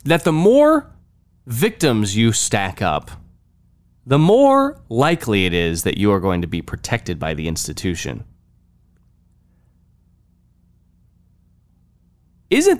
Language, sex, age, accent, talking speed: English, male, 20-39, American, 110 wpm